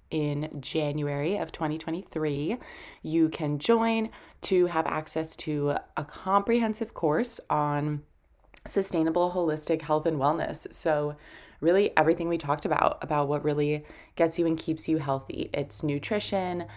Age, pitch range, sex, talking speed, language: 20-39, 150-175 Hz, female, 130 wpm, English